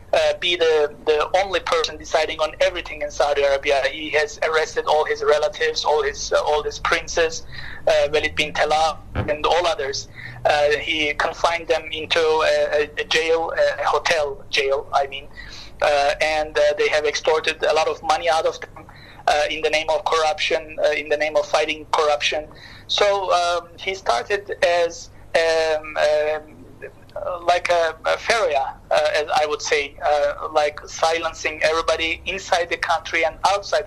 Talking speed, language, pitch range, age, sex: 165 wpm, English, 145-165 Hz, 30-49, male